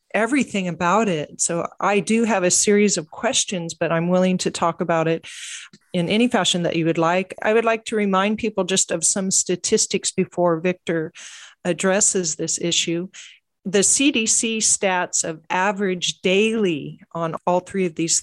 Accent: American